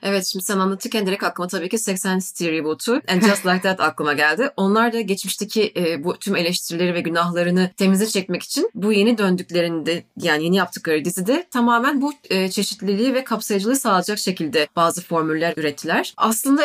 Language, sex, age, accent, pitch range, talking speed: Turkish, female, 30-49, native, 170-235 Hz, 170 wpm